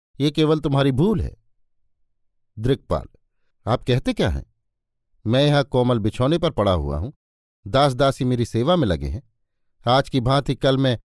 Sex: male